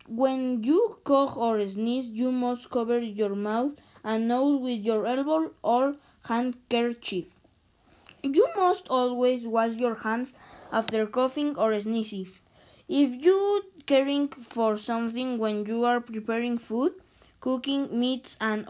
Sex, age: female, 20-39